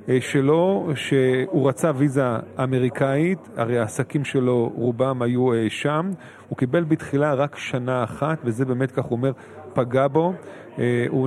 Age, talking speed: 40-59, 135 wpm